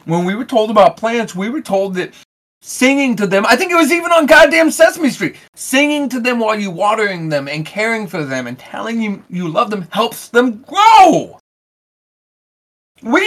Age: 30-49